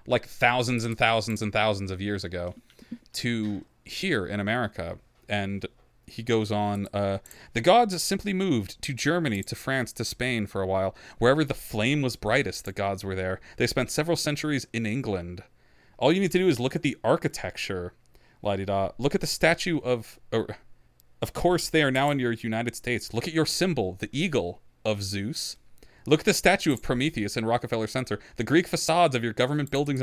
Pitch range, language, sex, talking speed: 105-145 Hz, English, male, 190 wpm